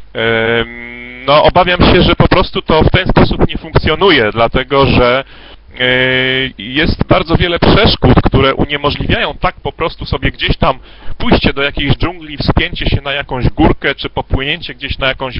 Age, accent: 40-59, native